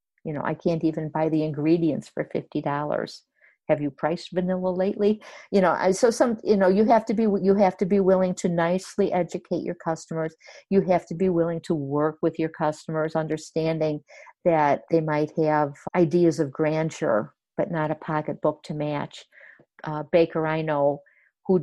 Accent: American